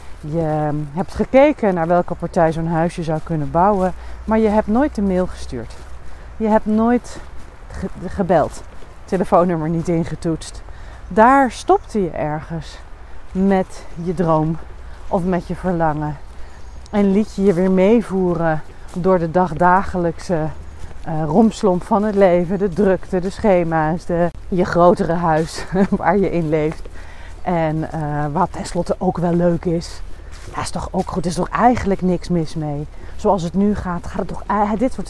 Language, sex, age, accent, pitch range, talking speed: Dutch, female, 30-49, Dutch, 160-205 Hz, 150 wpm